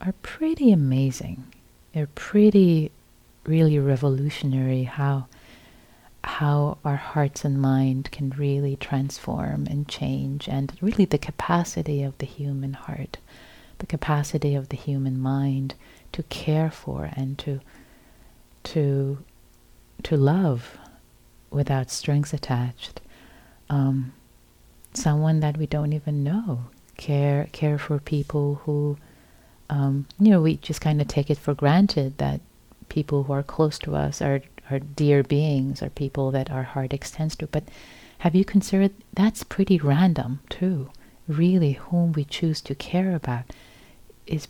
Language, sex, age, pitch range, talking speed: English, female, 30-49, 135-155 Hz, 135 wpm